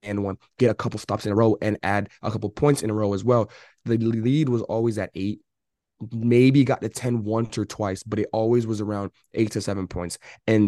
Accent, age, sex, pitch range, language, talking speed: American, 20-39, male, 105-125 Hz, English, 235 wpm